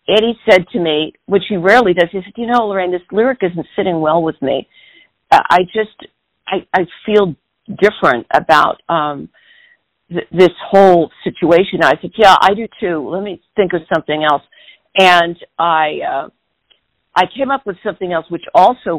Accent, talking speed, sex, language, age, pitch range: American, 170 wpm, female, English, 50-69, 160-195 Hz